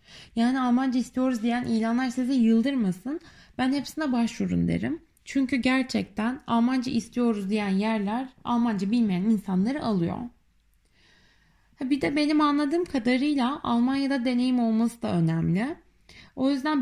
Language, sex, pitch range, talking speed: Turkish, female, 200-260 Hz, 120 wpm